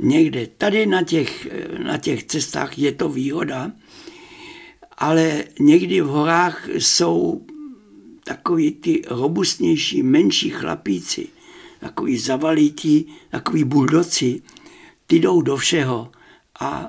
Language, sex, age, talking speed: Czech, male, 60-79, 105 wpm